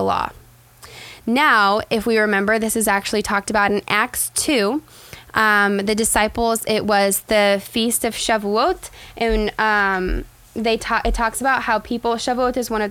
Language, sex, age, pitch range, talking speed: English, female, 10-29, 200-235 Hz, 165 wpm